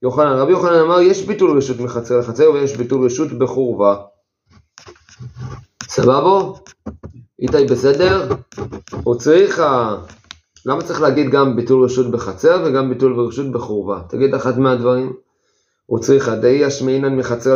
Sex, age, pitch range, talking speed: male, 30-49, 120-150 Hz, 130 wpm